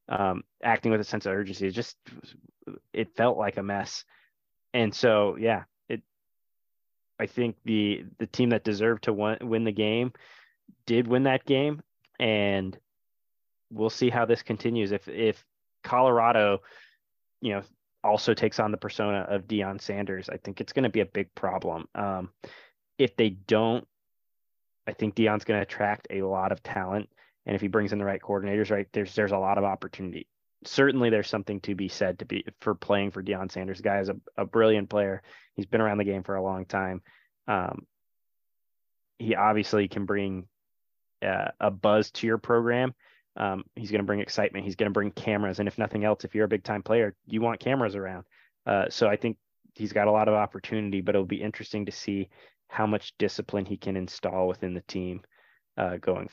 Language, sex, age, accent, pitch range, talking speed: English, male, 20-39, American, 100-110 Hz, 195 wpm